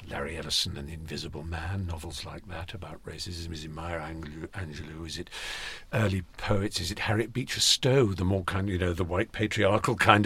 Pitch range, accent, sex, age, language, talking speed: 95-120 Hz, British, male, 50-69, English, 195 wpm